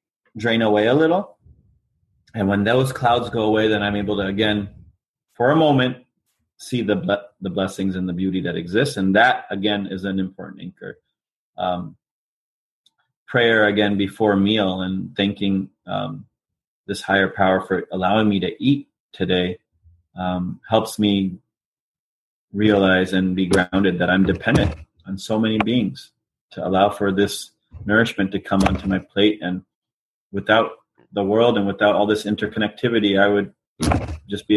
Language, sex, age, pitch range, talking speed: English, male, 30-49, 95-110 Hz, 155 wpm